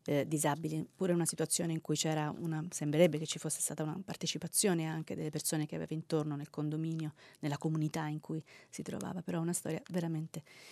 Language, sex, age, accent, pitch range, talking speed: Italian, female, 30-49, native, 145-170 Hz, 190 wpm